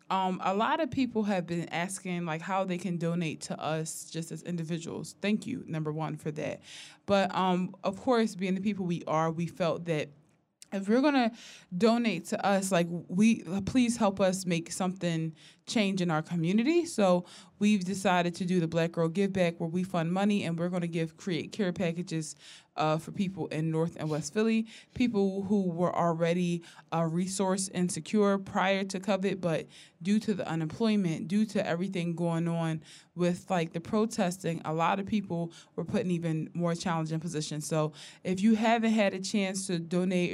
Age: 20-39